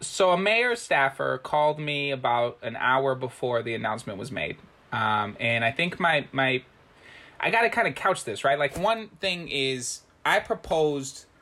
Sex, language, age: male, English, 20-39